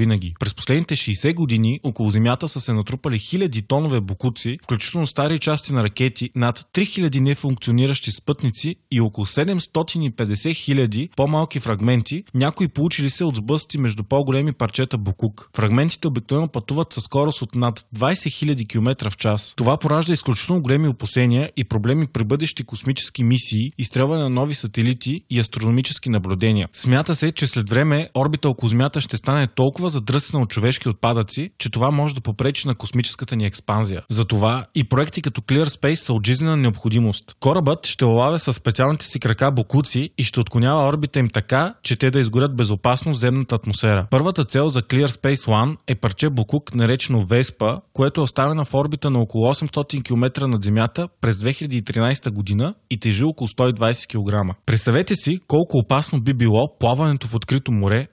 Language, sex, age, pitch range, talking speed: Bulgarian, male, 20-39, 115-145 Hz, 165 wpm